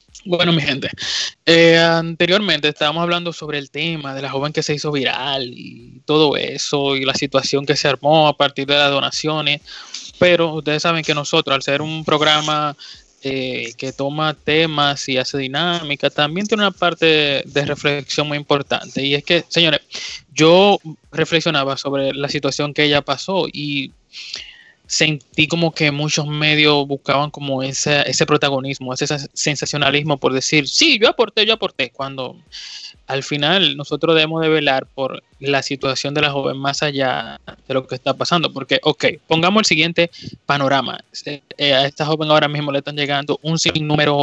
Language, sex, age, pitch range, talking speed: Spanish, male, 20-39, 140-160 Hz, 170 wpm